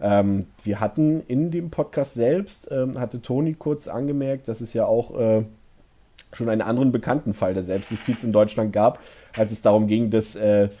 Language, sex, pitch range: German, male, 105-130 Hz